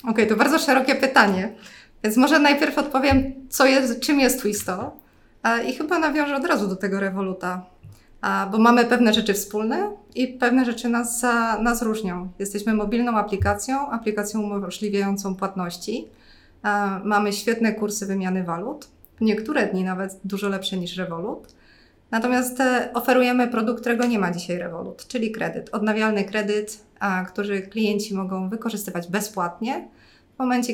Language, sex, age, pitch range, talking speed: Polish, female, 20-39, 195-235 Hz, 140 wpm